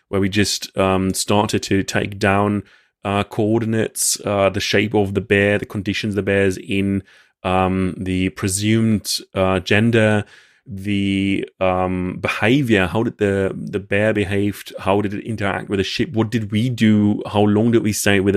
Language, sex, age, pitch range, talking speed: English, male, 30-49, 95-105 Hz, 170 wpm